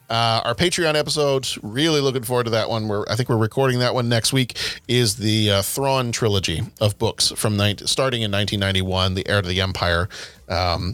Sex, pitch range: male, 105-135 Hz